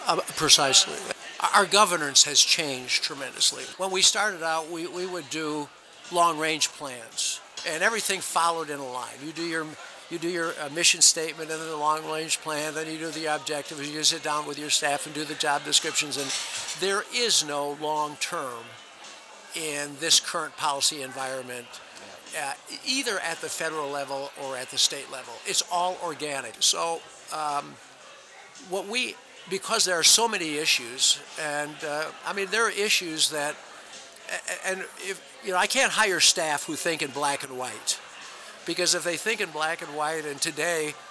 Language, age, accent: English, 60-79, American